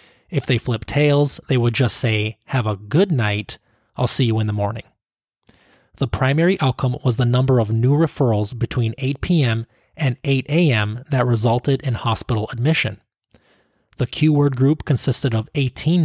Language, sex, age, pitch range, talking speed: English, male, 20-39, 115-140 Hz, 165 wpm